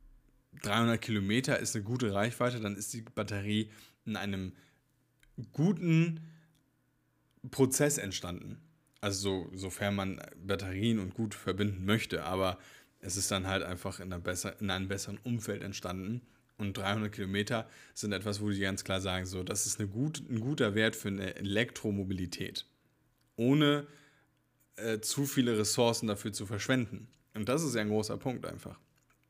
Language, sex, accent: German, male, German